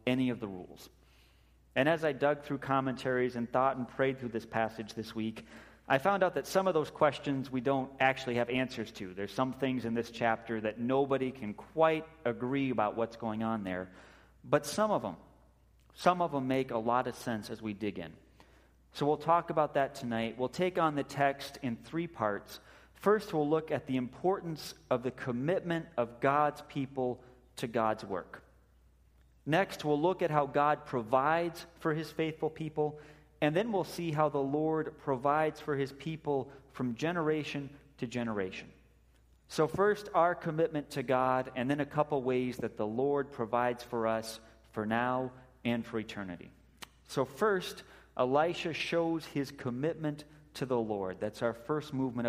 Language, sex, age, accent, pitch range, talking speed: English, male, 40-59, American, 115-150 Hz, 180 wpm